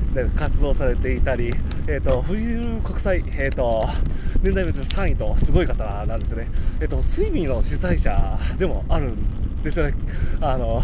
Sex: male